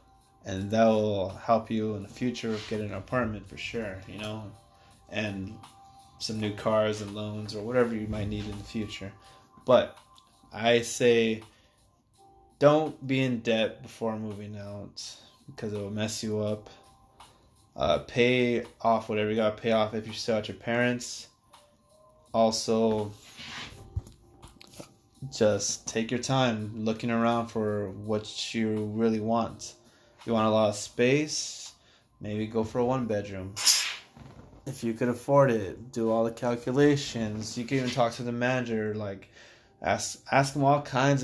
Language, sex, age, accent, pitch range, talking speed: English, male, 20-39, American, 105-120 Hz, 155 wpm